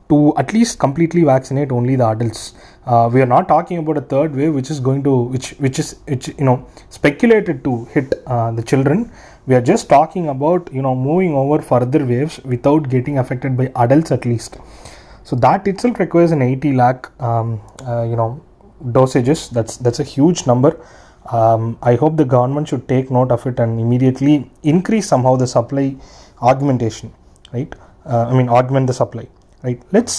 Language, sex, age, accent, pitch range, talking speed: English, male, 20-39, Indian, 120-150 Hz, 185 wpm